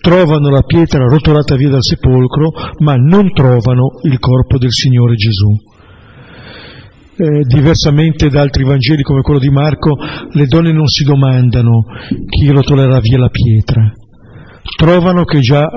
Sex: male